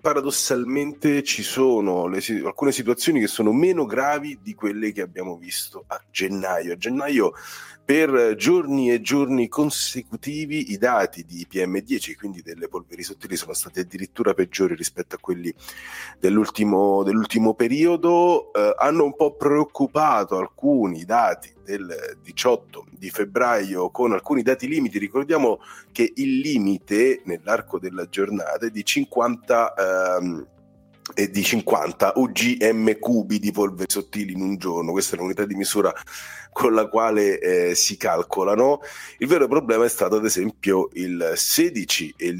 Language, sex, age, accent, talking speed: Italian, male, 30-49, native, 145 wpm